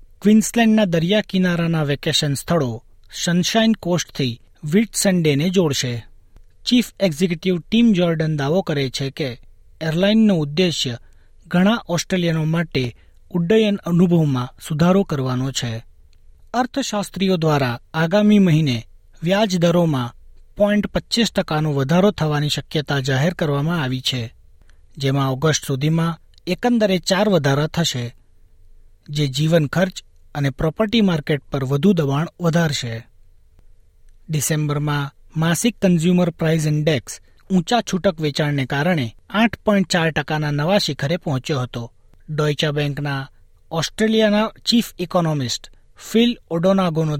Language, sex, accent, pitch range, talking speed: Gujarati, male, native, 135-190 Hz, 105 wpm